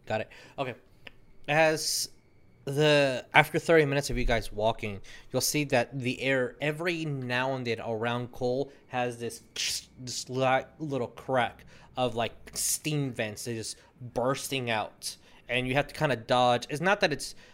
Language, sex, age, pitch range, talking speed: English, male, 20-39, 105-135 Hz, 160 wpm